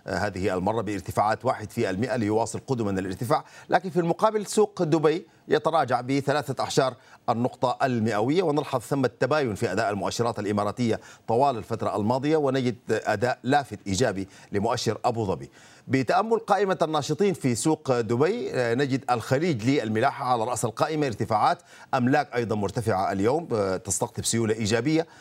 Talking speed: 130 wpm